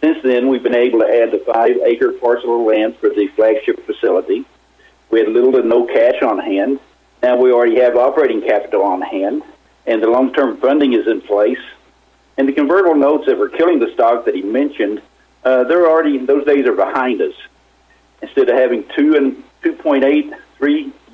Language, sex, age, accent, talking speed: English, male, 50-69, American, 185 wpm